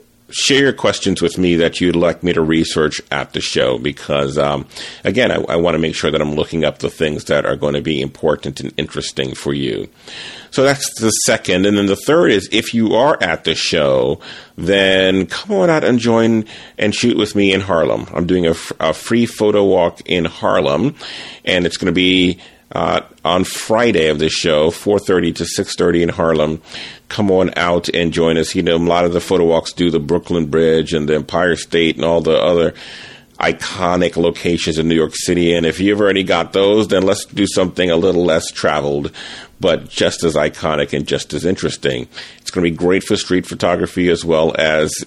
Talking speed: 205 wpm